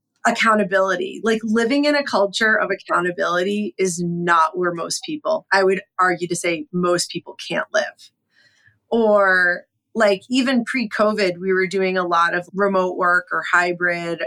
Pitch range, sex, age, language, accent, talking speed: 185-235 Hz, female, 30-49, English, American, 155 wpm